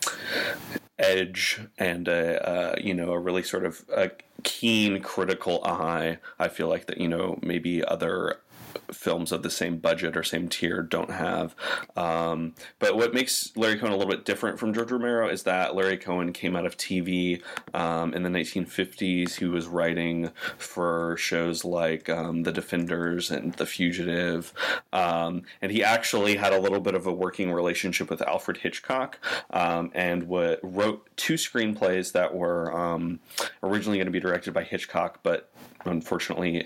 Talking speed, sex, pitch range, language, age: 165 wpm, male, 85-95 Hz, English, 30-49